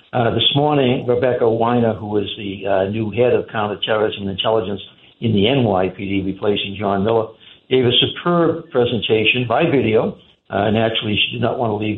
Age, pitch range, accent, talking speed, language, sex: 60-79, 105-130 Hz, American, 175 wpm, English, male